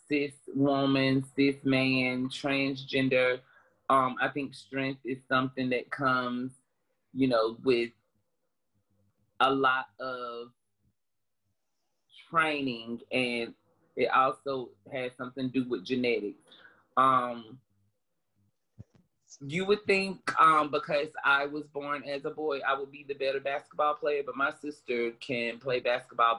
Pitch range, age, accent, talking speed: 115-135 Hz, 30-49, American, 125 wpm